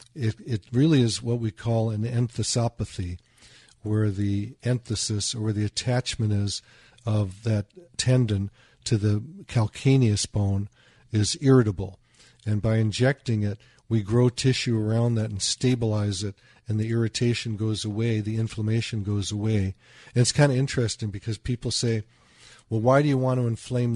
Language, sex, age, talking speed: English, male, 50-69, 155 wpm